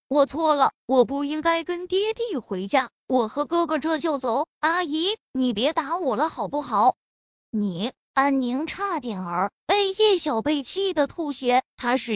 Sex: female